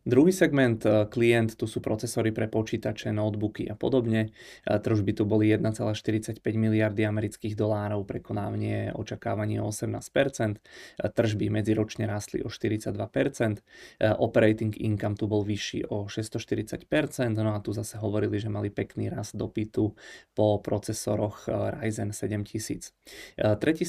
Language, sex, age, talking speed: Czech, male, 20-39, 125 wpm